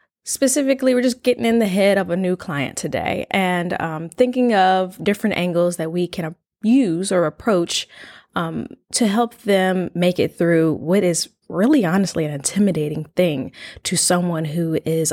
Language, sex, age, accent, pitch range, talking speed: English, female, 20-39, American, 170-230 Hz, 165 wpm